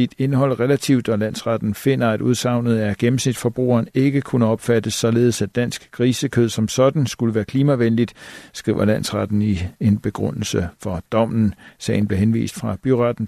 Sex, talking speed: male, 155 wpm